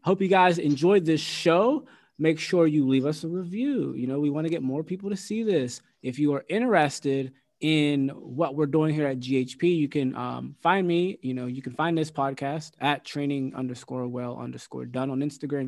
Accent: American